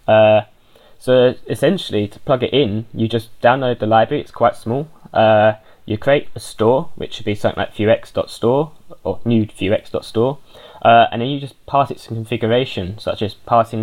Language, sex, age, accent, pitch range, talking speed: English, male, 10-29, British, 105-120 Hz, 180 wpm